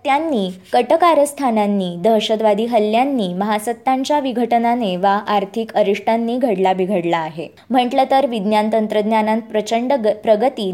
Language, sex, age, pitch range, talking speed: Marathi, male, 20-39, 200-245 Hz, 95 wpm